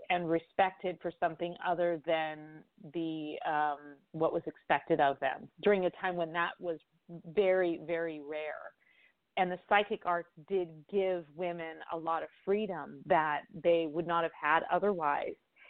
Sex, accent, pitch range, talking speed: female, American, 165-195 Hz, 155 wpm